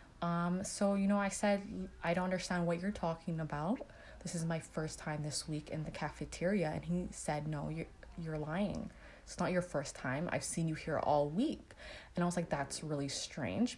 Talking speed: 210 wpm